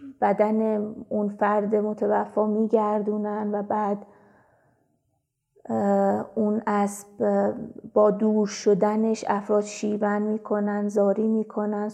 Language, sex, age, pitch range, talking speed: Persian, female, 20-39, 205-220 Hz, 85 wpm